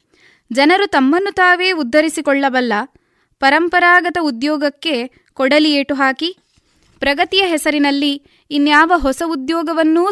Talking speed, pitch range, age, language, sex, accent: 85 wpm, 250-315 Hz, 20-39, Kannada, female, native